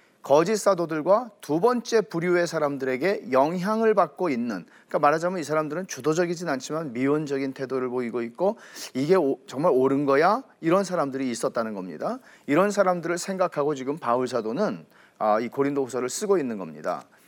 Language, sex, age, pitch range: Korean, male, 40-59, 145-210 Hz